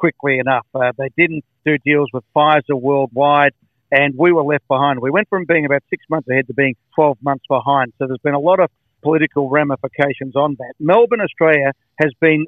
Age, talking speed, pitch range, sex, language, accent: 50-69, 200 wpm, 135-170 Hz, male, English, Australian